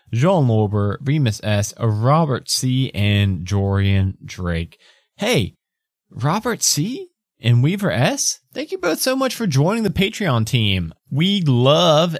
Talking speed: 135 wpm